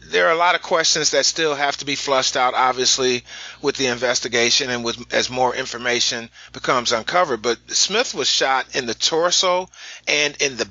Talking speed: 190 wpm